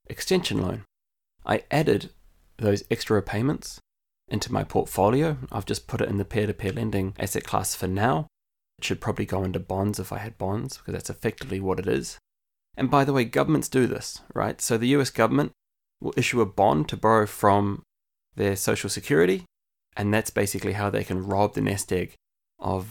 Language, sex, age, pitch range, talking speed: English, male, 20-39, 100-115 Hz, 185 wpm